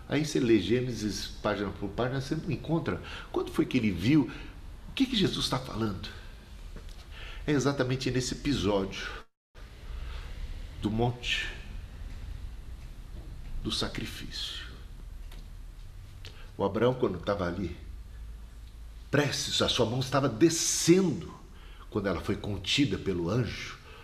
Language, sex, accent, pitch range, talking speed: Portuguese, male, Brazilian, 80-120 Hz, 110 wpm